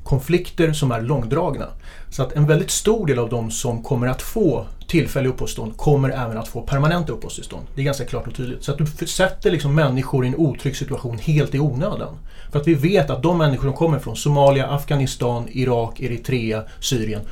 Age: 30-49